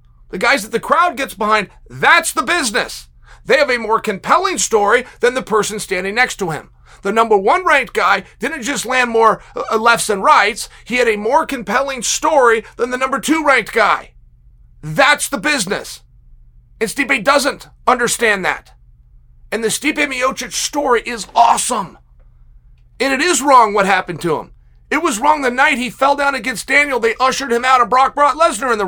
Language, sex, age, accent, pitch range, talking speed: English, male, 40-59, American, 200-280 Hz, 185 wpm